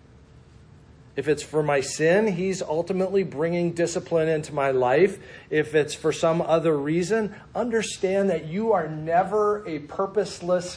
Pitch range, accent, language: 135-170 Hz, American, English